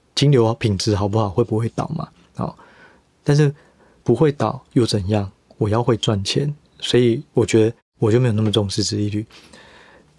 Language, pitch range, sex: Chinese, 110-135 Hz, male